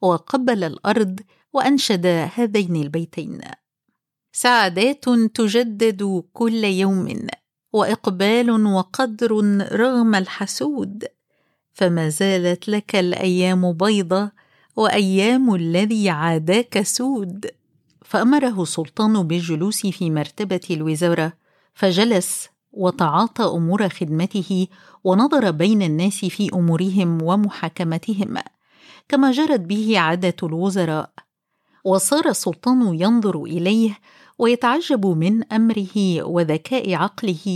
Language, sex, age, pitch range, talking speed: Arabic, female, 50-69, 180-225 Hz, 85 wpm